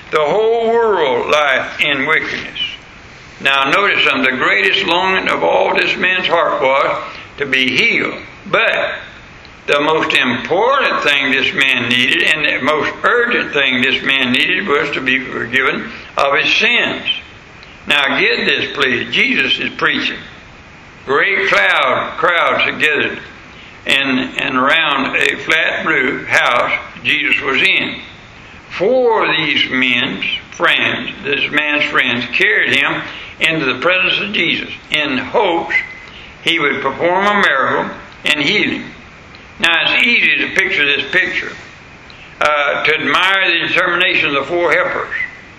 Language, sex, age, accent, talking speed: English, male, 60-79, American, 140 wpm